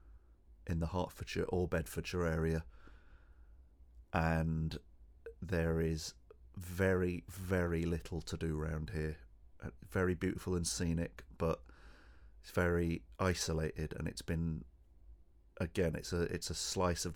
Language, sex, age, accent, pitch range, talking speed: English, male, 30-49, British, 80-85 Hz, 120 wpm